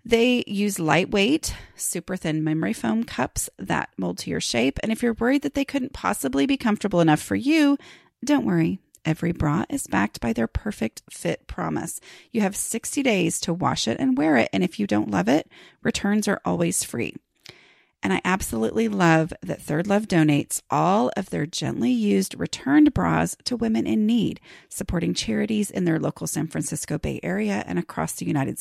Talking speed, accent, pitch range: 185 wpm, American, 165-255 Hz